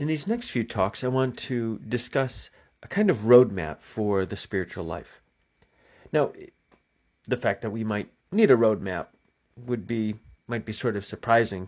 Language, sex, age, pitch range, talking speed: English, male, 30-49, 105-140 Hz, 170 wpm